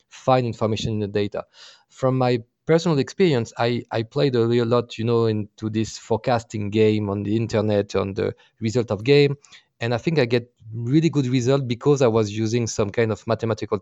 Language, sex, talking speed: English, male, 195 wpm